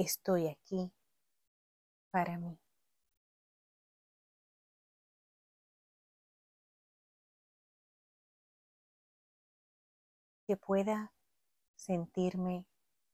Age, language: 30-49, Spanish